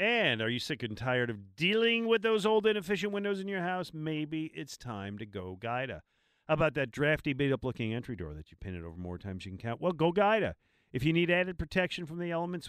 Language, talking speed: English, 230 wpm